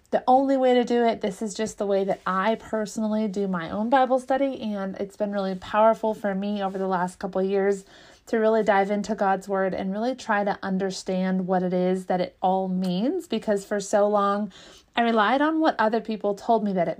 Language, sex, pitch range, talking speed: English, female, 190-220 Hz, 220 wpm